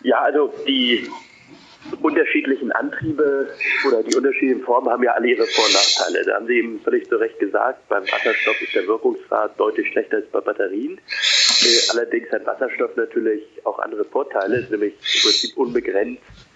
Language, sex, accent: German, male, German